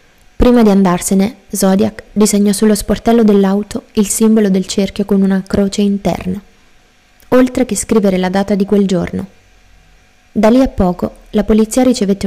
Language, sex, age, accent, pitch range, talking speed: Italian, female, 20-39, native, 195-225 Hz, 150 wpm